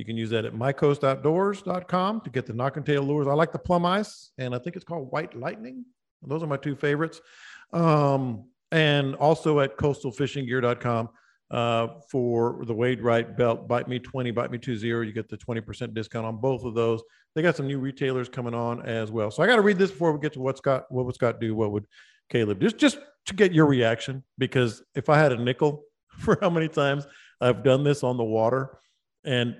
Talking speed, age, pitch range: 215 wpm, 50-69, 125-160 Hz